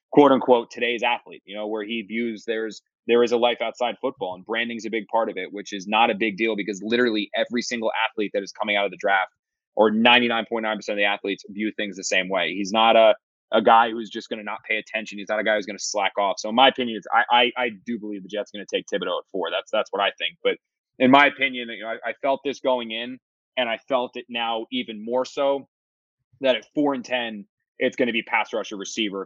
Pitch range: 105-120 Hz